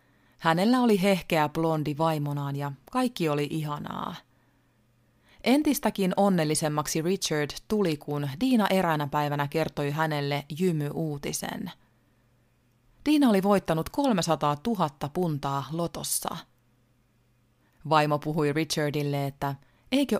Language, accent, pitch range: Finnish, native, 135-170 Hz